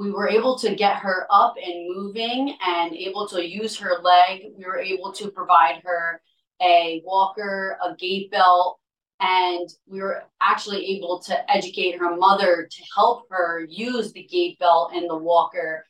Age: 20-39